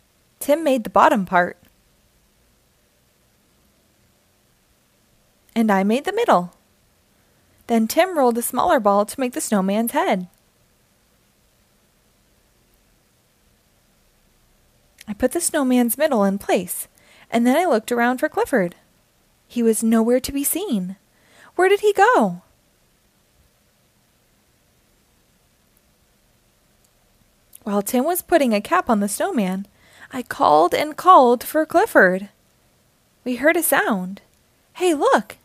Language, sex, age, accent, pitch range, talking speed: English, female, 20-39, American, 210-315 Hz, 110 wpm